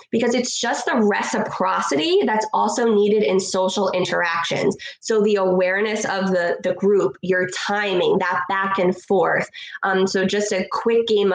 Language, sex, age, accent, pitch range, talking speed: English, female, 20-39, American, 180-210 Hz, 160 wpm